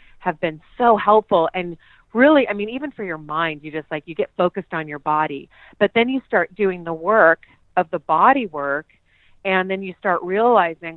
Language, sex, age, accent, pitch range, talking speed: English, female, 40-59, American, 160-190 Hz, 200 wpm